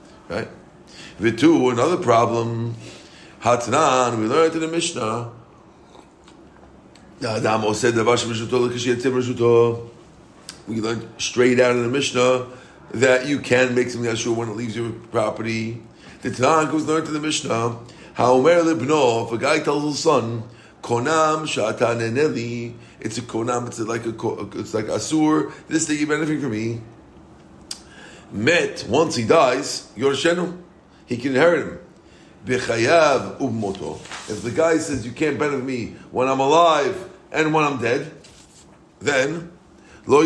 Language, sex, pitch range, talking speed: English, male, 115-150 Hz, 135 wpm